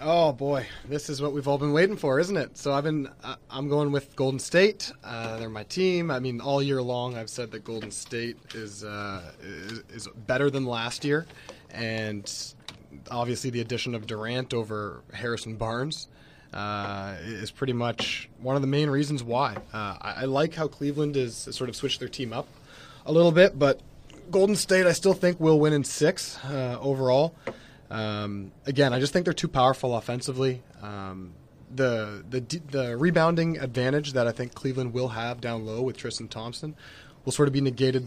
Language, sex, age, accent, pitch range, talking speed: English, male, 20-39, American, 115-145 Hz, 190 wpm